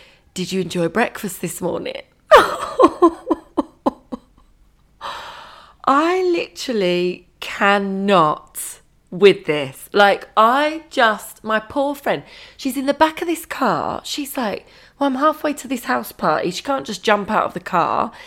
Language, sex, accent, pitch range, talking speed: English, female, British, 165-240 Hz, 135 wpm